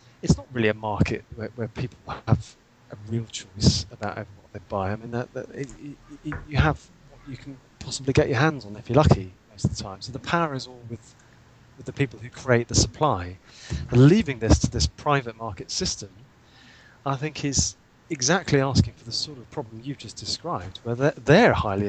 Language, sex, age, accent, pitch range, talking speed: English, male, 30-49, British, 105-130 Hz, 215 wpm